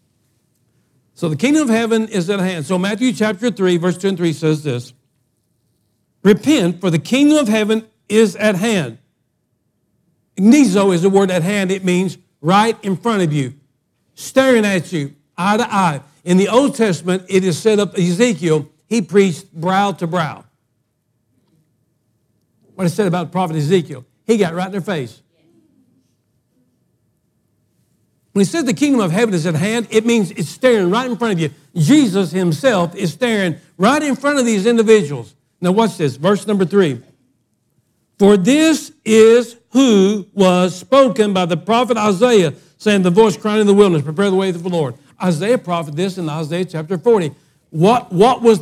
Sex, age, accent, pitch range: male, 60-79, American, 160-225 Hz